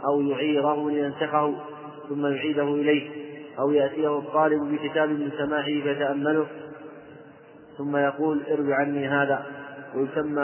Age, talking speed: 30-49, 110 wpm